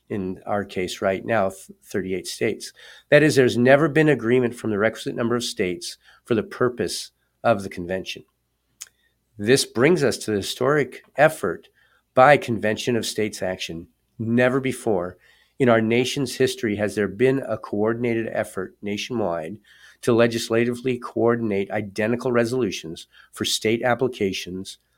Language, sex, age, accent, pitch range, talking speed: English, male, 50-69, American, 105-130 Hz, 140 wpm